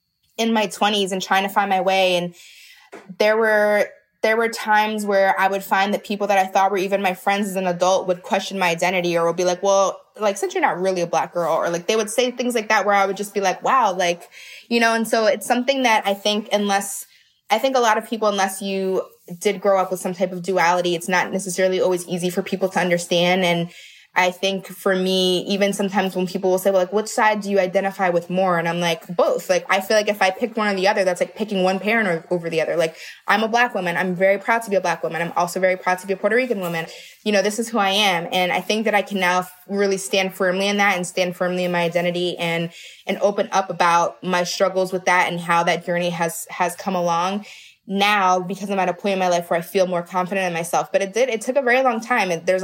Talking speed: 265 wpm